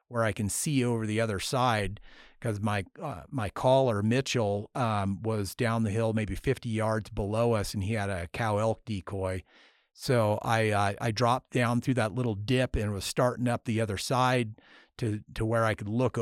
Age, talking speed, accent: 40-59, 205 wpm, American